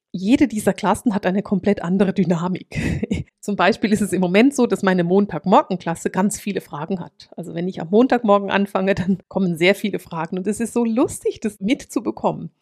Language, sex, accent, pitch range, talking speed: German, female, German, 190-235 Hz, 195 wpm